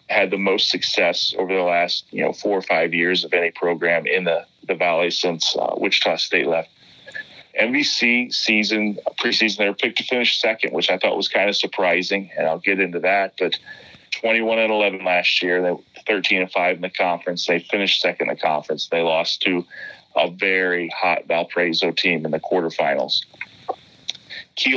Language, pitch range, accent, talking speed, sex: English, 90-105 Hz, American, 180 wpm, male